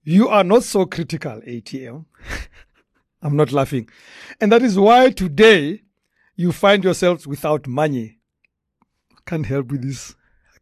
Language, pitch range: English, 150-225 Hz